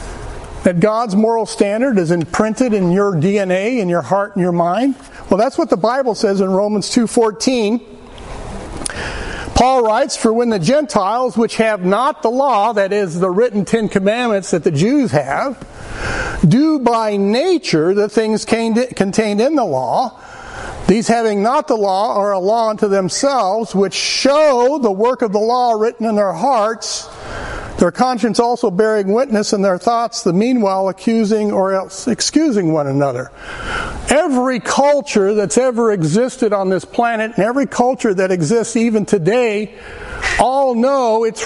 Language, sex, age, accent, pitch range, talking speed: English, male, 50-69, American, 200-245 Hz, 160 wpm